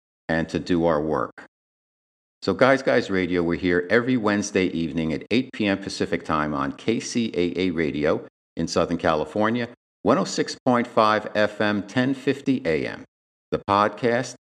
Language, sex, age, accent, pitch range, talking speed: English, male, 50-69, American, 85-105 Hz, 130 wpm